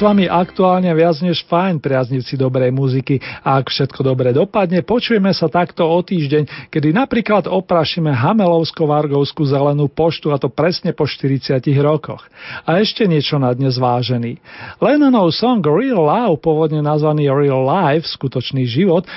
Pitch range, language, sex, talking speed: 135-175 Hz, Slovak, male, 140 wpm